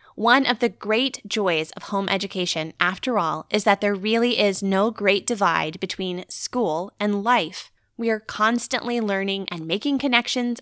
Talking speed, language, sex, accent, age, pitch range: 165 wpm, English, female, American, 20-39, 185-235 Hz